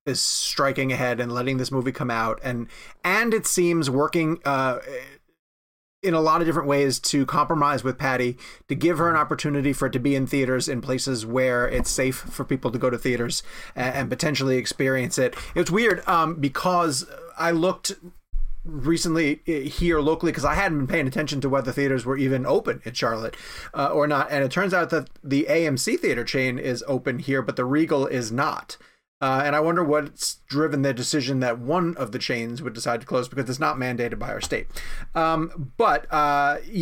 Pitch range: 130-160 Hz